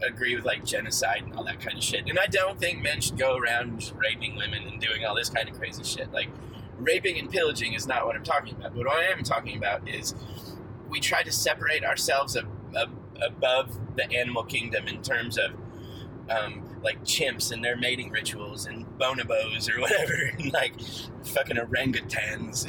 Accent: American